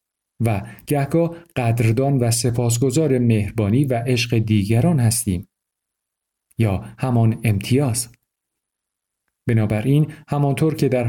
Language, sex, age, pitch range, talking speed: Persian, male, 50-69, 105-135 Hz, 90 wpm